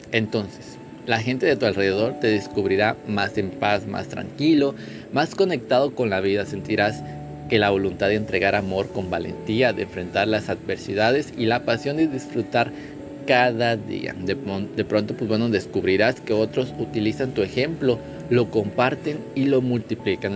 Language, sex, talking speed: Spanish, male, 160 wpm